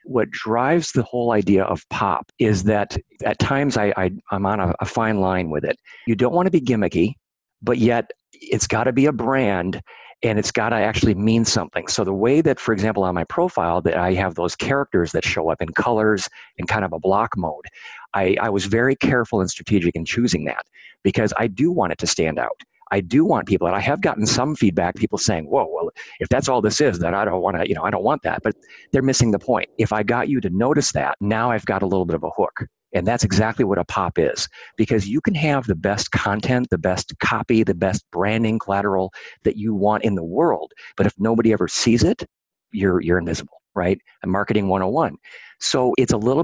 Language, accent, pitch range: English, American, 95-120 Hz